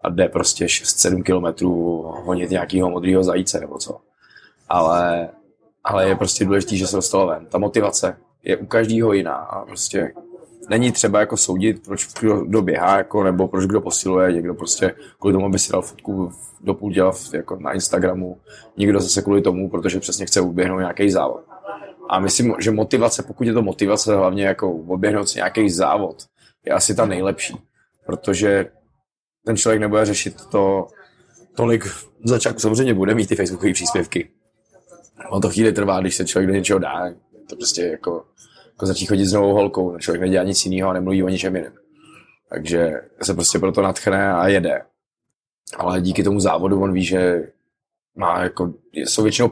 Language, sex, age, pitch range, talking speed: Czech, male, 20-39, 90-100 Hz, 170 wpm